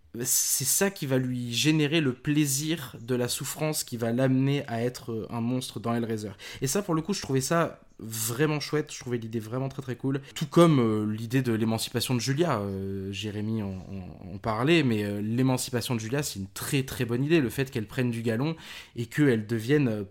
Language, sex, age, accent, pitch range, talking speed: French, male, 20-39, French, 115-145 Hz, 205 wpm